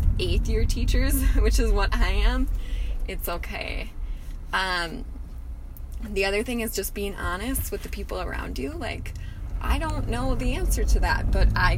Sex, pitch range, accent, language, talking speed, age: female, 70-95 Hz, American, English, 170 wpm, 20-39